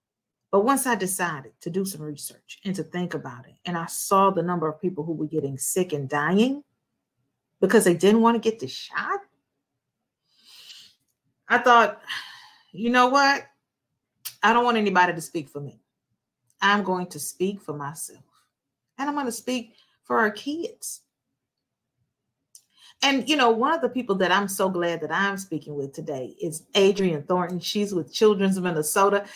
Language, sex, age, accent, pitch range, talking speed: English, female, 40-59, American, 185-250 Hz, 175 wpm